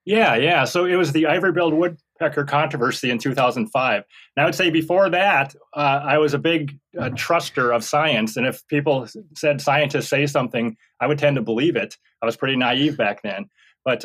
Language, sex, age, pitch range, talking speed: English, male, 30-49, 120-150 Hz, 195 wpm